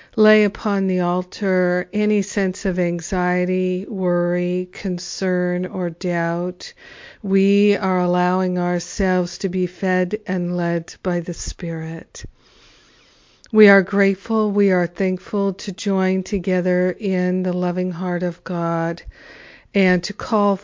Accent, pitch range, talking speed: American, 175-195 Hz, 120 wpm